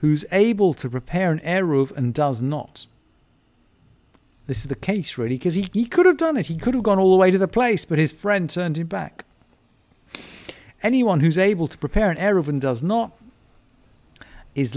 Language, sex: English, male